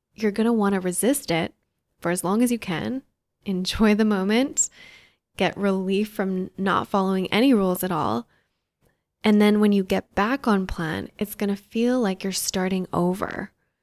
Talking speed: 180 wpm